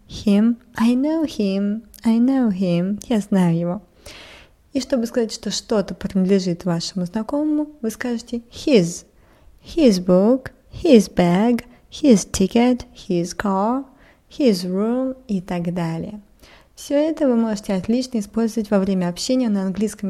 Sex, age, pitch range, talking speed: female, 20-39, 190-240 Hz, 135 wpm